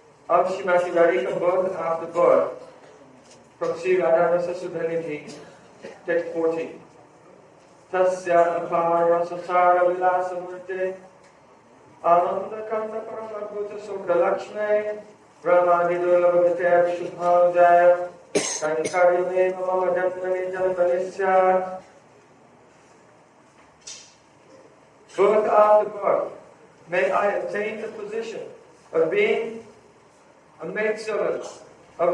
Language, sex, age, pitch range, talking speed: Hindi, male, 40-59, 175-230 Hz, 90 wpm